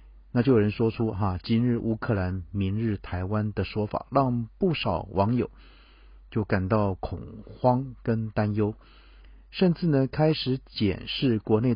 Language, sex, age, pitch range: Chinese, male, 50-69, 100-135 Hz